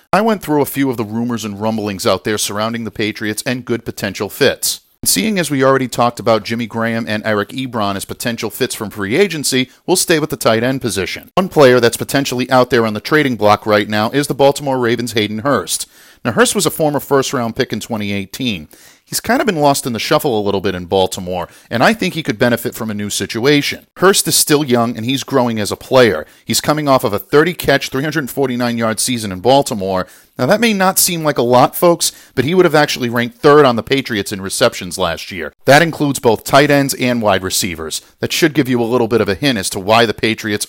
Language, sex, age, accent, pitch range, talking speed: English, male, 40-59, American, 110-145 Hz, 235 wpm